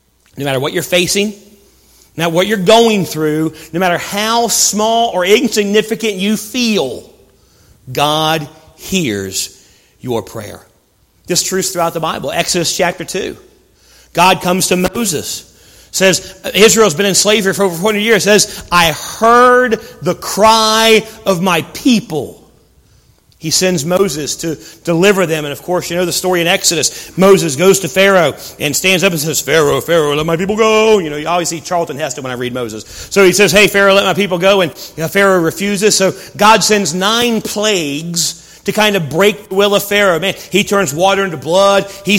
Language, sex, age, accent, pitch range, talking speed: English, male, 40-59, American, 170-215 Hz, 180 wpm